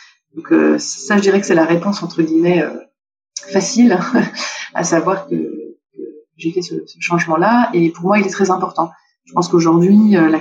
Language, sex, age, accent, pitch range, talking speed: French, female, 30-49, French, 165-205 Hz, 195 wpm